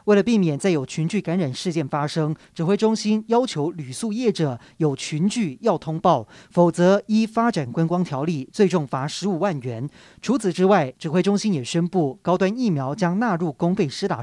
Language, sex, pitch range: Chinese, male, 150-200 Hz